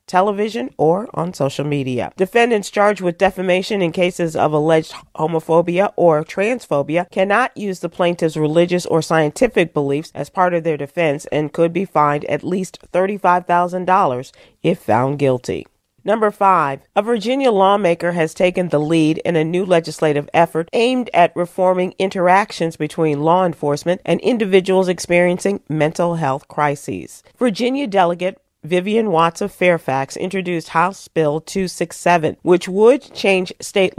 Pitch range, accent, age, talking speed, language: 160-195 Hz, American, 40-59, 140 wpm, English